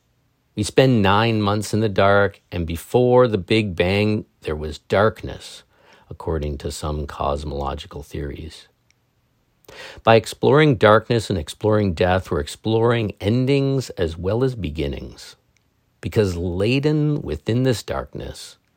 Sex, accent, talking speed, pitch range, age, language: male, American, 120 wpm, 80-110 Hz, 50-69, English